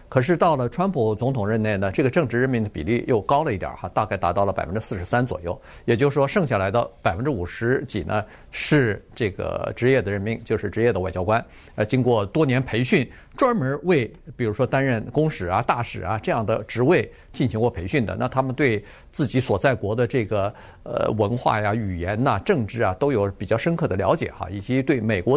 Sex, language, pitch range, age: male, Chinese, 110-165 Hz, 50-69